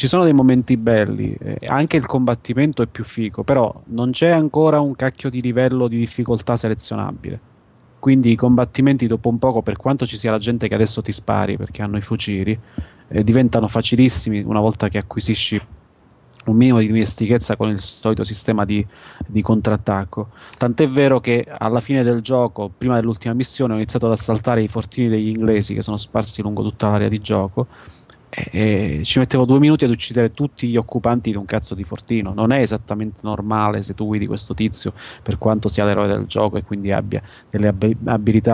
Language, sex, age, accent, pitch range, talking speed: Italian, male, 30-49, native, 105-120 Hz, 190 wpm